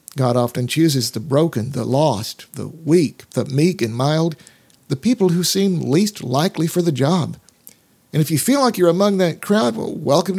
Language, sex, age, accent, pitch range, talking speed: English, male, 50-69, American, 135-175 Hz, 185 wpm